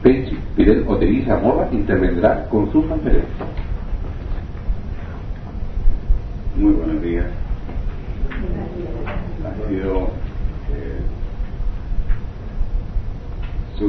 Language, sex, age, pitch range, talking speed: Spanish, male, 40-59, 85-105 Hz, 55 wpm